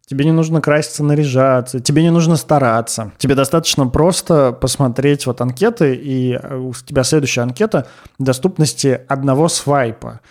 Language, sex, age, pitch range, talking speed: Russian, male, 20-39, 125-150 Hz, 135 wpm